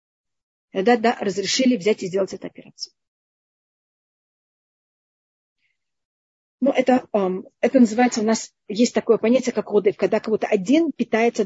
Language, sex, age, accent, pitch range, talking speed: Russian, female, 30-49, native, 205-245 Hz, 115 wpm